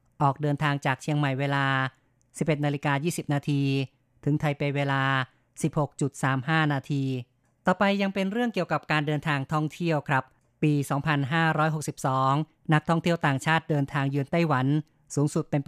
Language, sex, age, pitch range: Thai, female, 30-49, 140-155 Hz